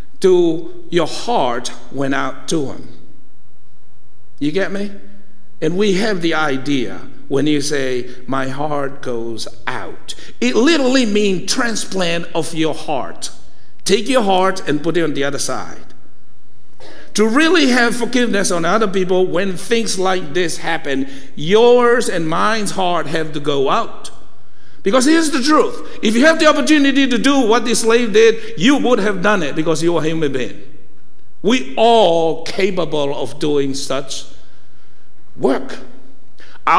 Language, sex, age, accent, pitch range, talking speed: English, male, 60-79, American, 145-225 Hz, 150 wpm